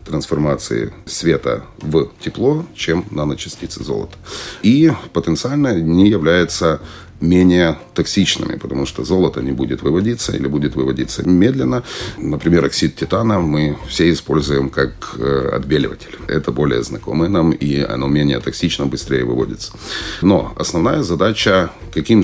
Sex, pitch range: male, 70-85 Hz